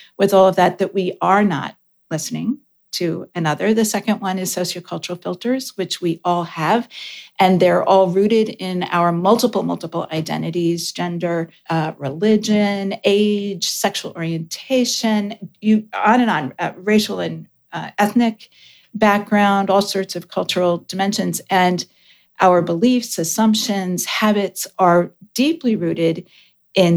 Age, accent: 40-59, American